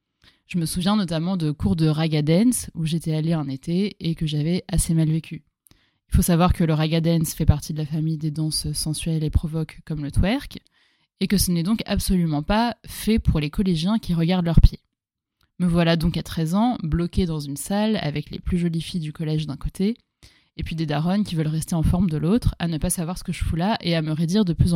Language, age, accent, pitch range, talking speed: French, 20-39, French, 160-195 Hz, 240 wpm